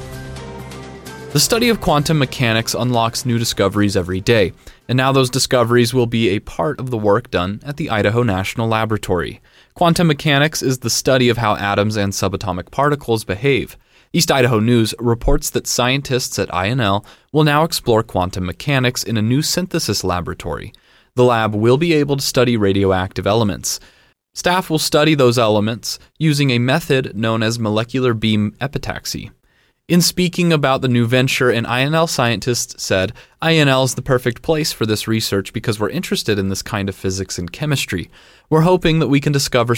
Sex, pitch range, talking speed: male, 100-135 Hz, 170 wpm